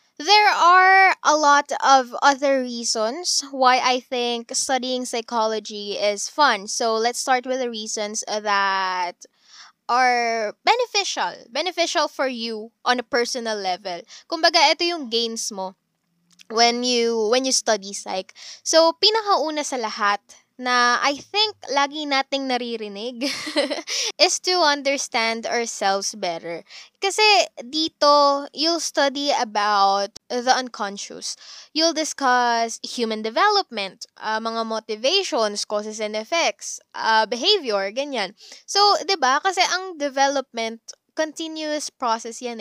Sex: female